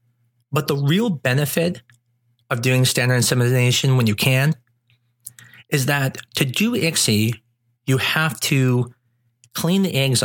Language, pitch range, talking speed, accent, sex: English, 120-140 Hz, 130 wpm, American, male